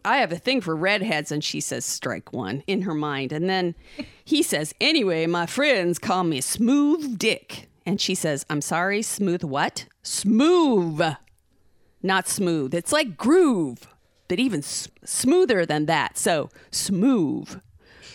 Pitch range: 165-245 Hz